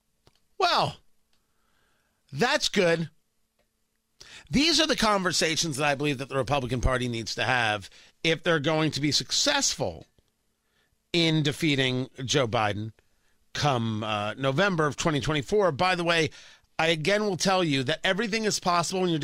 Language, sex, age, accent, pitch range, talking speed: English, male, 40-59, American, 140-185 Hz, 145 wpm